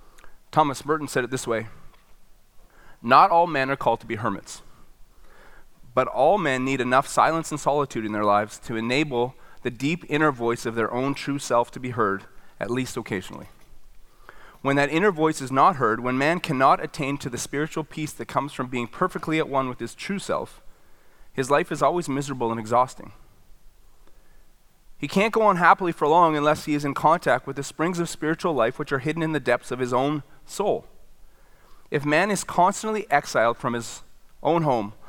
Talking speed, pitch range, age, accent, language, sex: 190 wpm, 115-155 Hz, 30-49, American, English, male